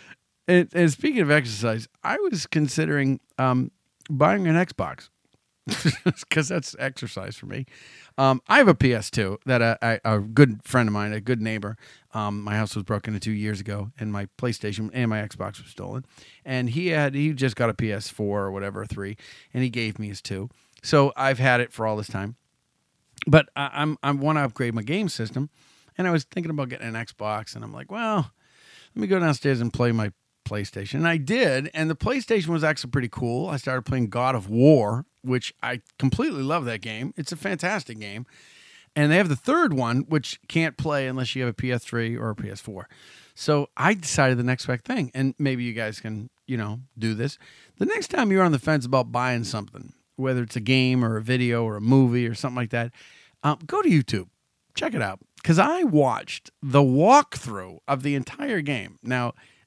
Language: English